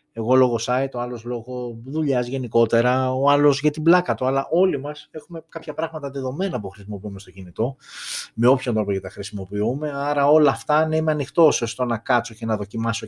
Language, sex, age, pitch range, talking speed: Greek, male, 20-39, 110-140 Hz, 190 wpm